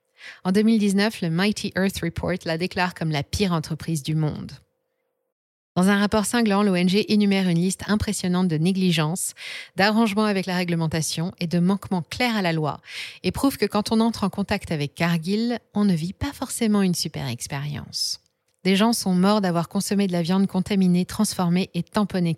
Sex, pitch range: female, 170-205 Hz